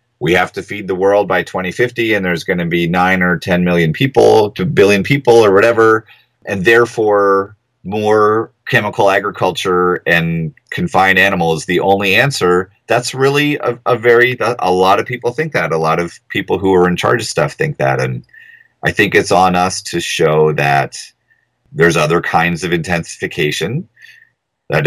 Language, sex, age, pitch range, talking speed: English, male, 30-49, 85-115 Hz, 175 wpm